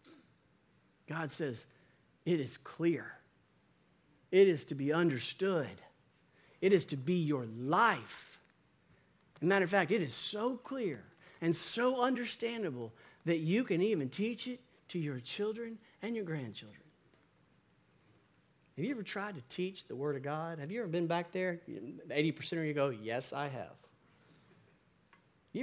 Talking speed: 150 wpm